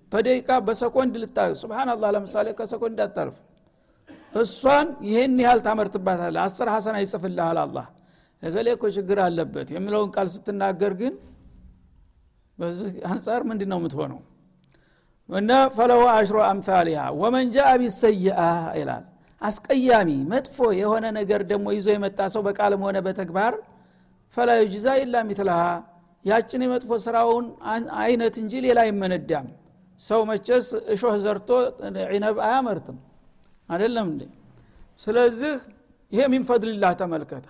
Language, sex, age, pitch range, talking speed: Amharic, male, 60-79, 190-240 Hz, 75 wpm